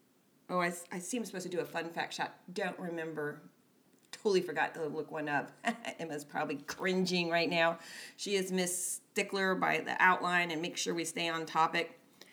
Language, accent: English, American